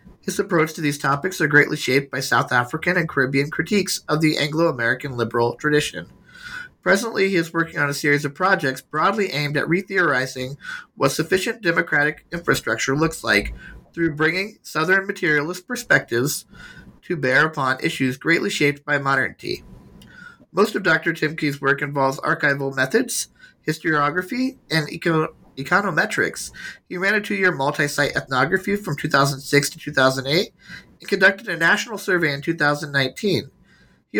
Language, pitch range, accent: English, 135-180 Hz, American